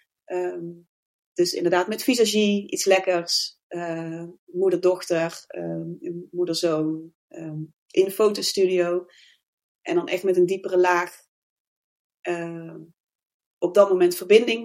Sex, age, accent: female, 30-49, Dutch